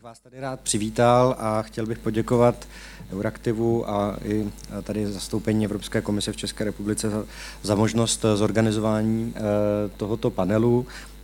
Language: Czech